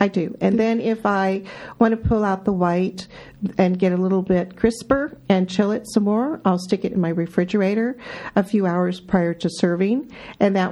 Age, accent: 50-69, American